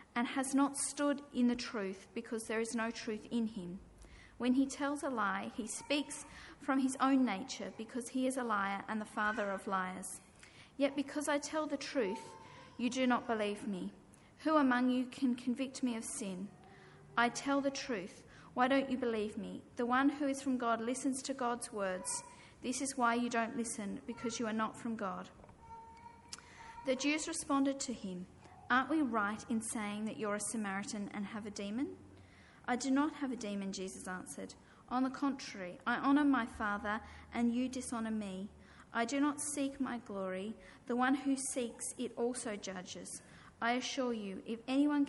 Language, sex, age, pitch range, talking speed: English, female, 40-59, 220-270 Hz, 185 wpm